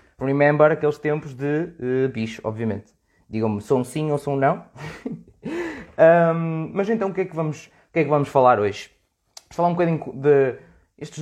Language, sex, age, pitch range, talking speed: Portuguese, male, 20-39, 120-145 Hz, 170 wpm